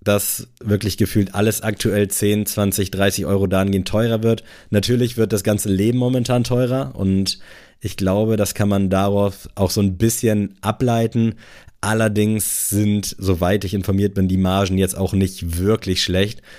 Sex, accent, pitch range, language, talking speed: male, German, 95-105 Hz, German, 160 wpm